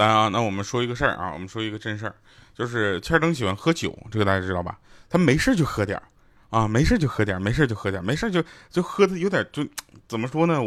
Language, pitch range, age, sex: Chinese, 110-170 Hz, 20-39, male